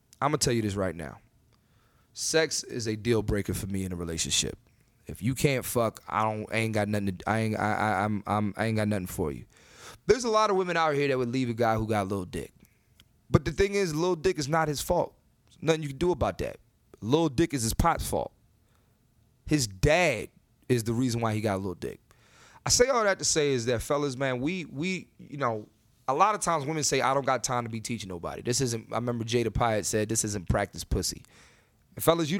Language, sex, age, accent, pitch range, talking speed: English, male, 20-39, American, 110-155 Hz, 245 wpm